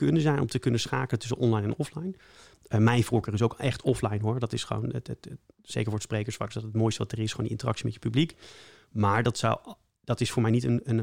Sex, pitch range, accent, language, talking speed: male, 110-130 Hz, Dutch, English, 270 wpm